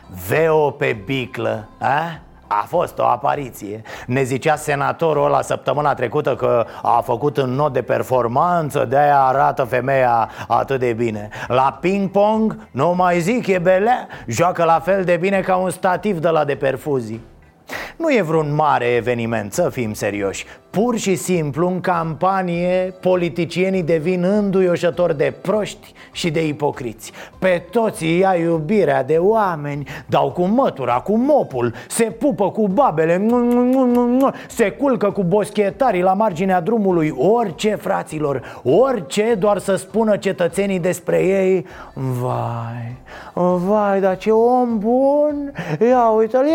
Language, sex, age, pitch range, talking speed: Romanian, male, 30-49, 140-205 Hz, 140 wpm